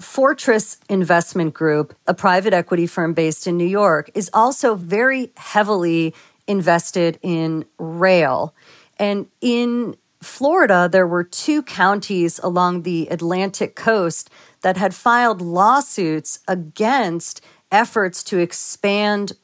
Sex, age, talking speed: female, 40-59, 115 wpm